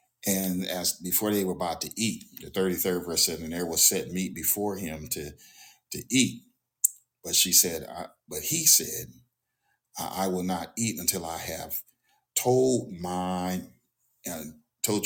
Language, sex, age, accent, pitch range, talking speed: English, male, 40-59, American, 80-95 Hz, 155 wpm